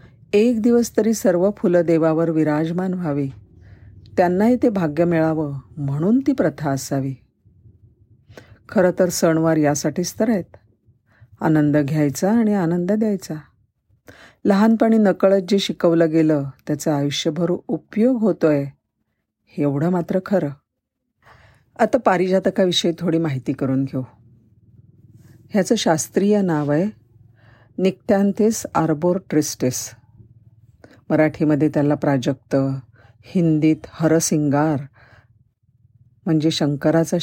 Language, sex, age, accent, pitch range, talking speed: Marathi, female, 50-69, native, 130-185 Hz, 100 wpm